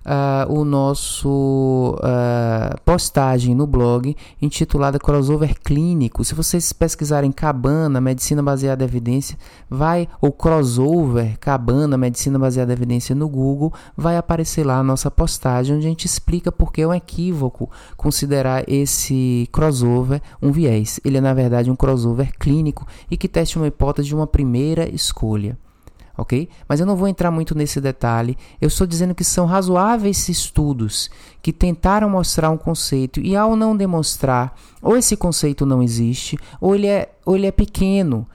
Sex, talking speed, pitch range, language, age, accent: male, 150 wpm, 130-175 Hz, Portuguese, 20-39, Brazilian